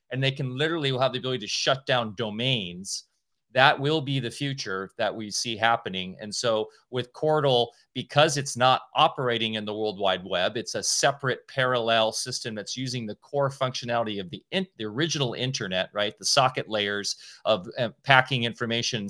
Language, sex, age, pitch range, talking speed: English, male, 30-49, 115-145 Hz, 175 wpm